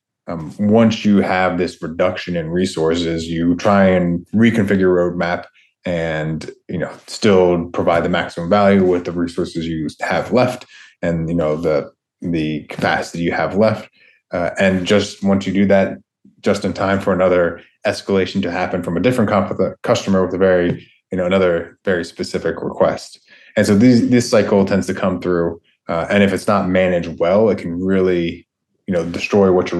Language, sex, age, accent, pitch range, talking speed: English, male, 30-49, American, 85-100 Hz, 180 wpm